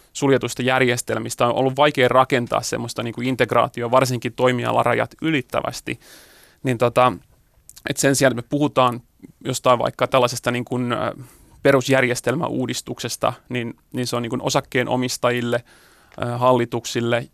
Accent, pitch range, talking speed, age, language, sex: native, 120-130 Hz, 90 wpm, 30-49, Finnish, male